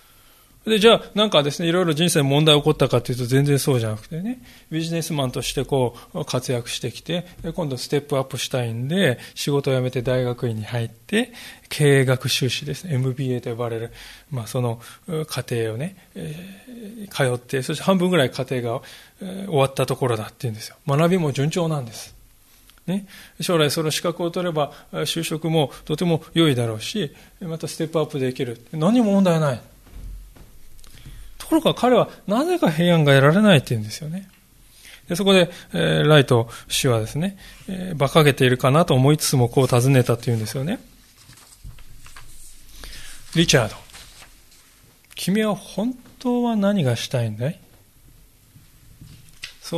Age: 20-39